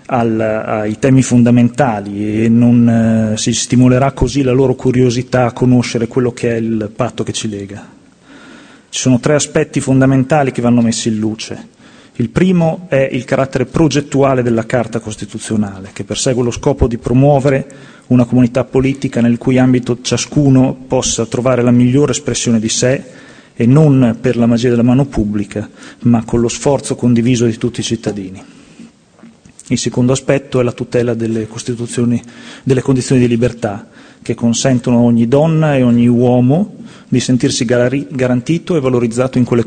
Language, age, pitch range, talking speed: Italian, 30-49, 115-135 Hz, 160 wpm